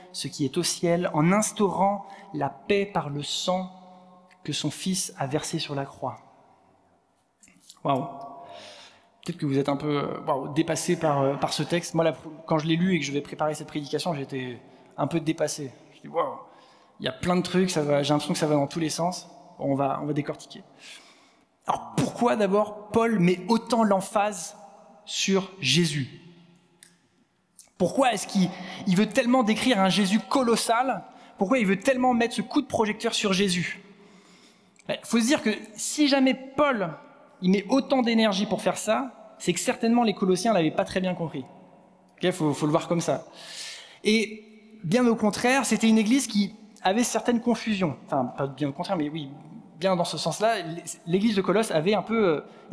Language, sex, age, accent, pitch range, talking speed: French, male, 20-39, French, 165-220 Hz, 190 wpm